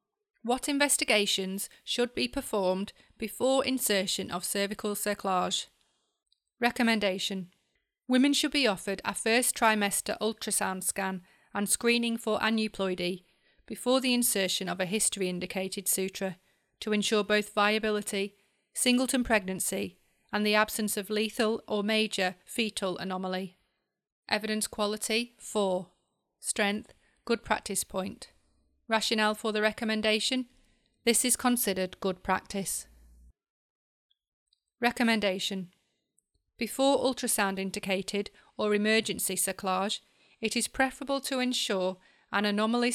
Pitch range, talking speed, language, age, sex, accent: 195-235 Hz, 105 wpm, English, 30-49, female, British